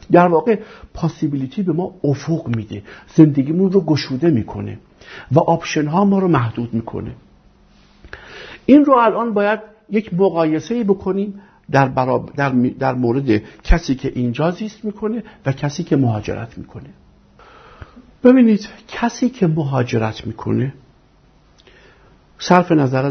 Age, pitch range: 50-69, 120-180 Hz